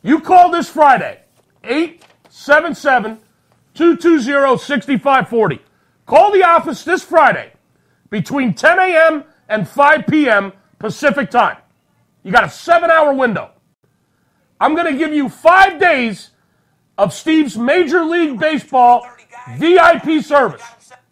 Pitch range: 245-320 Hz